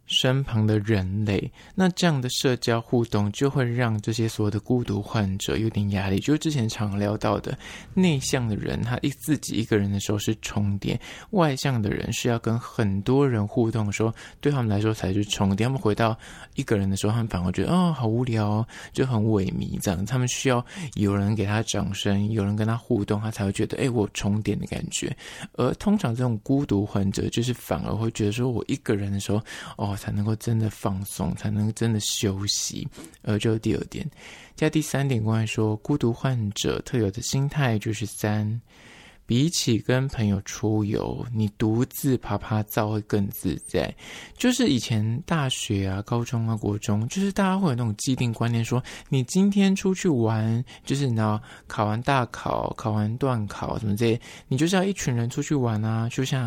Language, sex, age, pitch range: Chinese, male, 20-39, 105-125 Hz